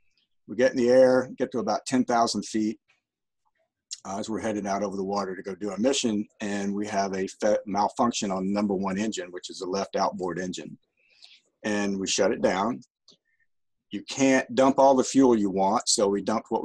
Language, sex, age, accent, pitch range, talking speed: English, male, 50-69, American, 100-120 Hz, 200 wpm